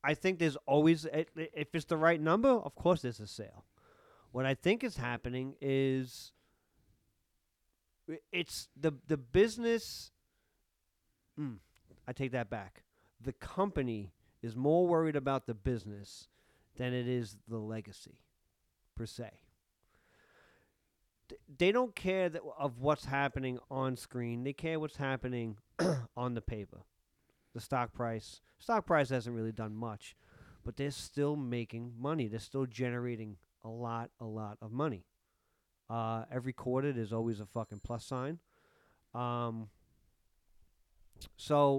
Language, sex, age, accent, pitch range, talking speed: English, male, 40-59, American, 110-145 Hz, 140 wpm